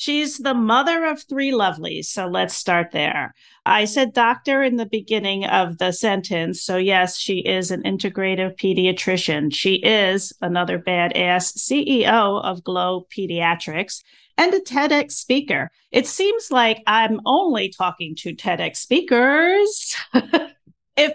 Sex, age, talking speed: female, 40-59, 135 wpm